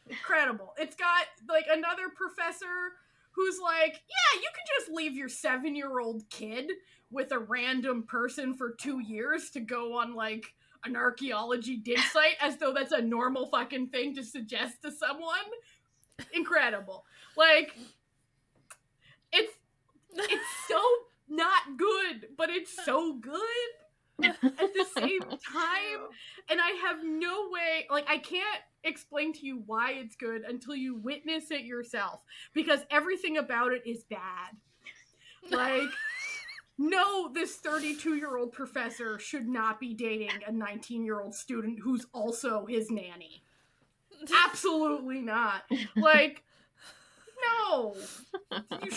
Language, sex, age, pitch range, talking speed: English, female, 20-39, 240-340 Hz, 125 wpm